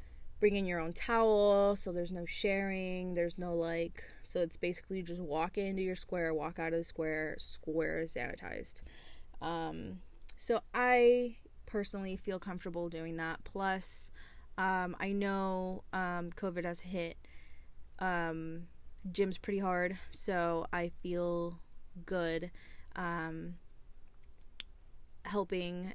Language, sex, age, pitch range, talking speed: English, female, 20-39, 170-200 Hz, 125 wpm